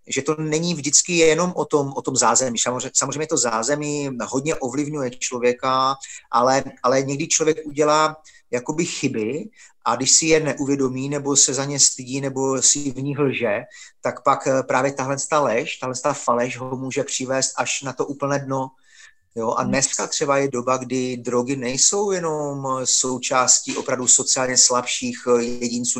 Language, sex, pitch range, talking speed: Slovak, male, 125-145 Hz, 155 wpm